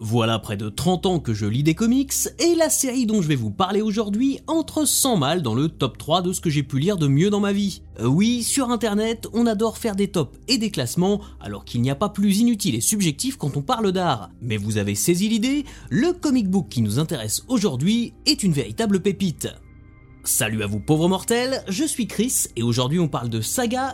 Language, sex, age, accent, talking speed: French, male, 30-49, French, 230 wpm